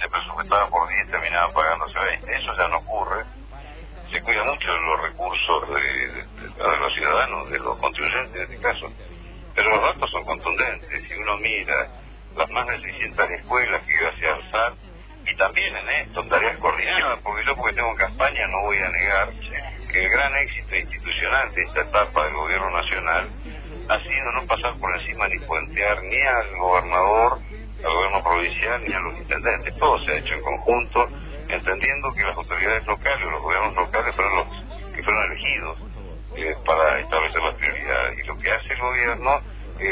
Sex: male